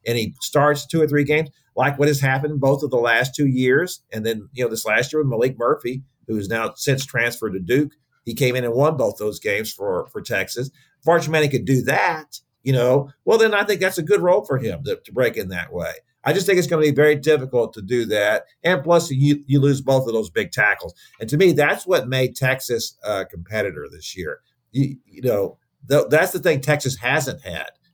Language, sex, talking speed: English, male, 235 wpm